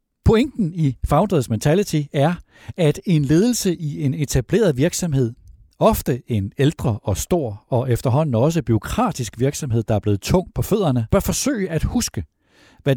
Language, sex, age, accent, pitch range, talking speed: Danish, male, 60-79, native, 105-165 Hz, 155 wpm